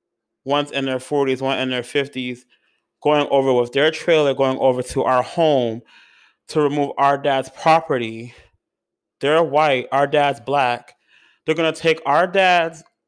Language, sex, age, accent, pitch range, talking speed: English, male, 30-49, American, 140-195 Hz, 155 wpm